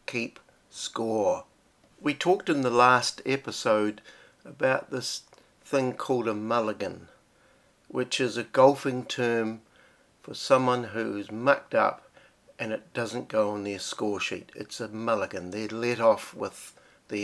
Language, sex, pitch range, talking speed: English, male, 105-130 Hz, 140 wpm